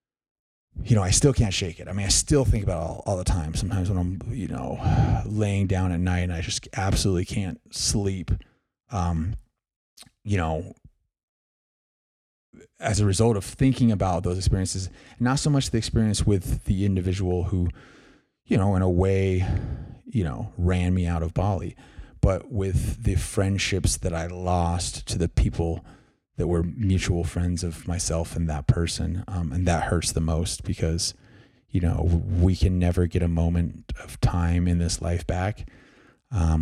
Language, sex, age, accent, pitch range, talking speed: English, male, 30-49, American, 85-100 Hz, 170 wpm